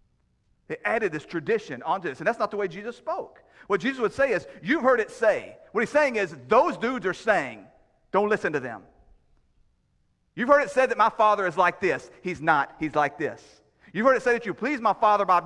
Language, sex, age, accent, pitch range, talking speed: English, male, 40-59, American, 175-240 Hz, 230 wpm